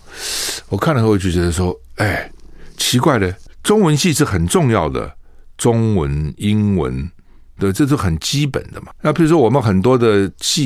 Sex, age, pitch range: male, 60-79, 95-145 Hz